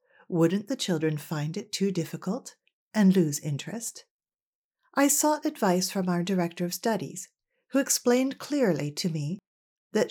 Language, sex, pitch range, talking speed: English, female, 170-225 Hz, 140 wpm